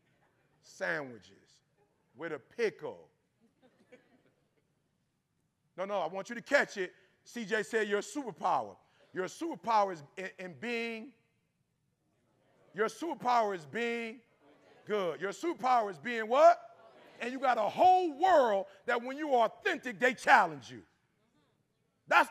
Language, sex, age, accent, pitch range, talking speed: English, male, 40-59, American, 230-310 Hz, 125 wpm